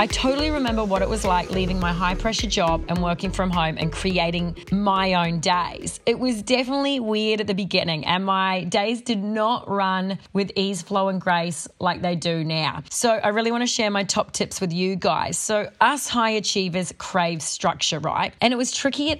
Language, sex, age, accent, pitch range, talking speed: English, female, 30-49, Australian, 180-225 Hz, 210 wpm